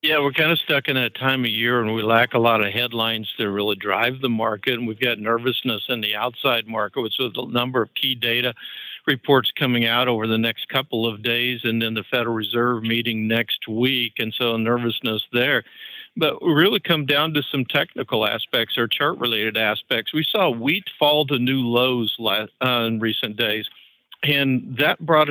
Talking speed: 195 wpm